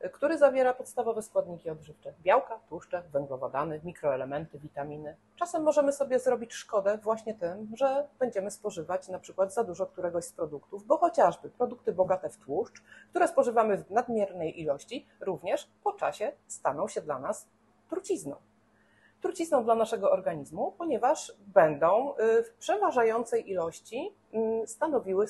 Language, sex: Polish, female